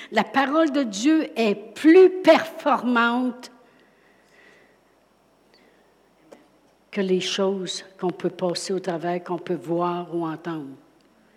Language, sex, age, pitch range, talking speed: French, female, 60-79, 195-240 Hz, 105 wpm